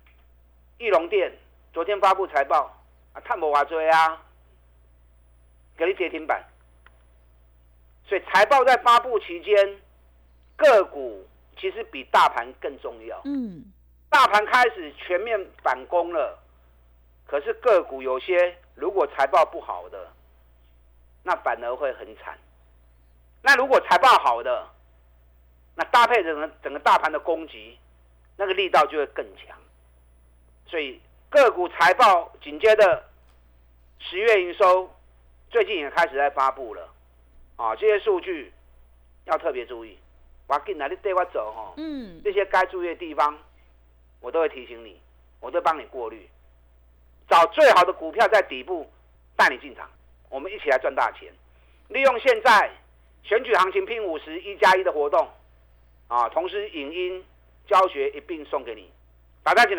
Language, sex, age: Chinese, male, 50-69